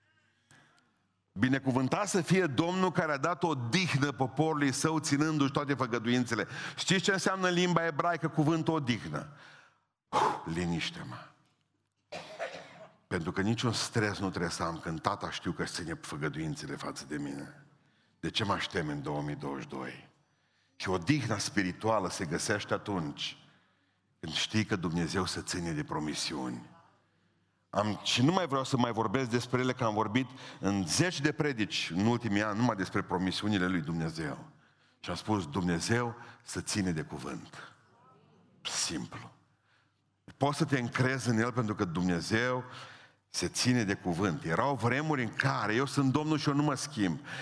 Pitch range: 100-140 Hz